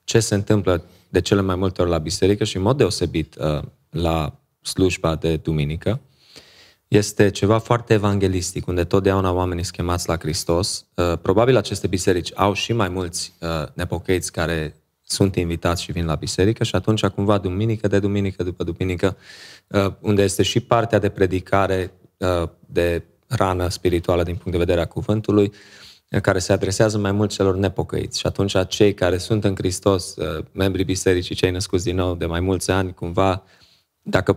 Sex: male